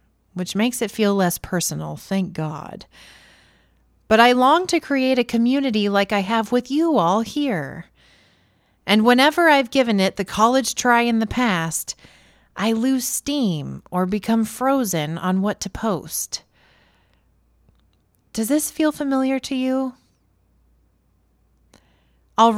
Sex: female